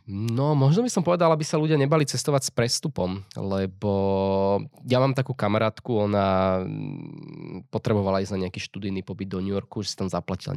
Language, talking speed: Slovak, 175 wpm